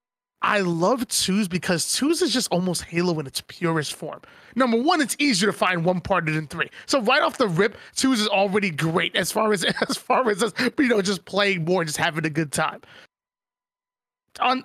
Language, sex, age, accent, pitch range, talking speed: English, male, 20-39, American, 175-225 Hz, 210 wpm